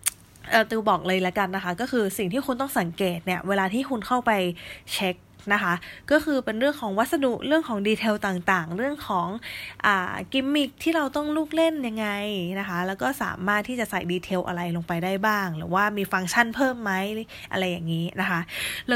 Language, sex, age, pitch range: English, female, 20-39, 185-245 Hz